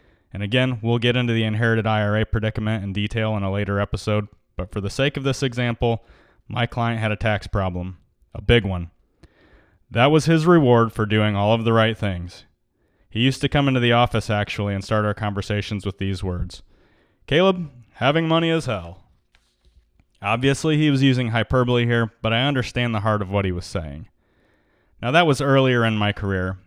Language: English